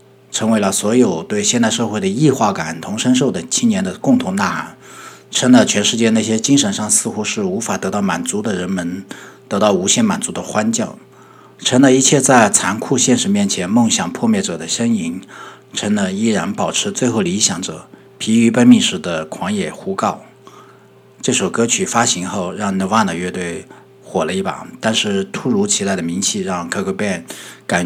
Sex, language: male, Chinese